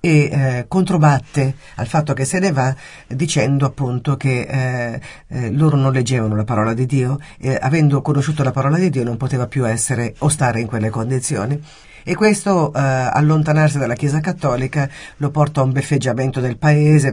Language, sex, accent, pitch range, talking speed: Italian, female, native, 130-155 Hz, 180 wpm